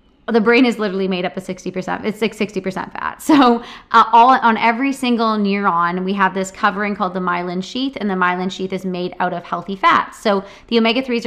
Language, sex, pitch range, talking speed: English, female, 185-230 Hz, 215 wpm